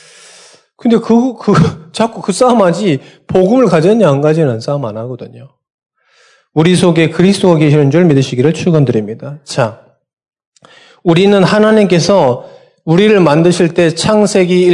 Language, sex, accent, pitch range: Korean, male, native, 165-215 Hz